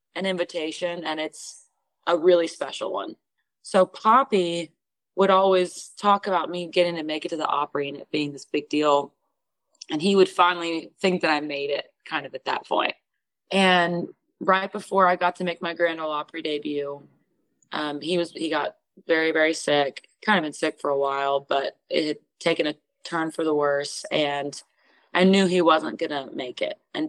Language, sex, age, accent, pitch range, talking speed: English, female, 20-39, American, 150-180 Hz, 195 wpm